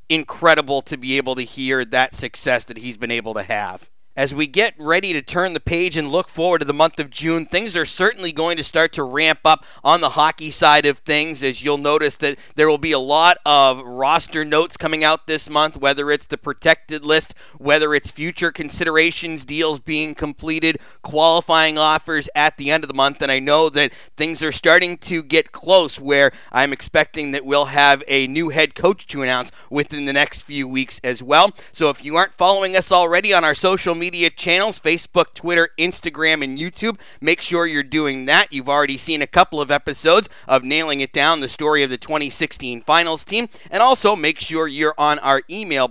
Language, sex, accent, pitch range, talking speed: English, male, American, 140-170 Hz, 210 wpm